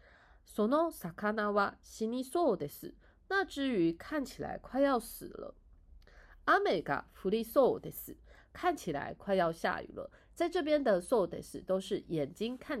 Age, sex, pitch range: 30-49, female, 170-260 Hz